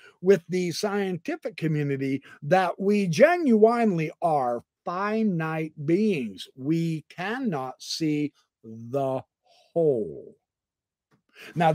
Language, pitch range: English, 150-195 Hz